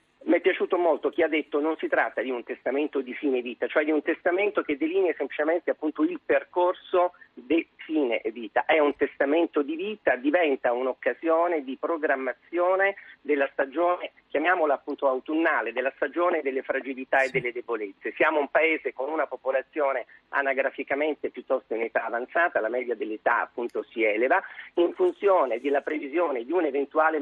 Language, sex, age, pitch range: Italian, male, 40-59, 130-165 Hz